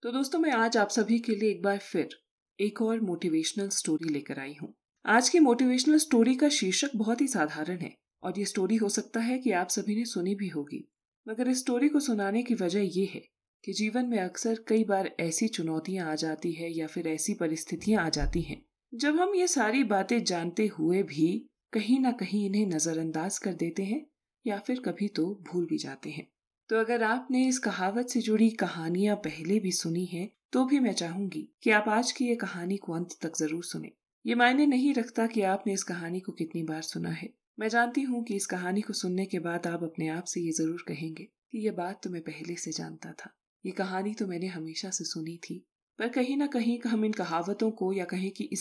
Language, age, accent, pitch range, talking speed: Hindi, 30-49, native, 175-235 Hz, 220 wpm